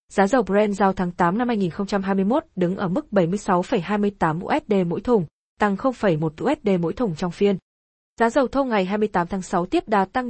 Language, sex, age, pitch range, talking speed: Vietnamese, female, 20-39, 185-240 Hz, 185 wpm